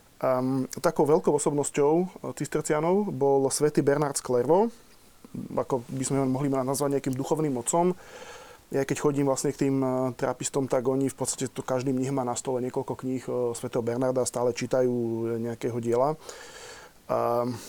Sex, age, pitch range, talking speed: male, 20-39, 130-155 Hz, 155 wpm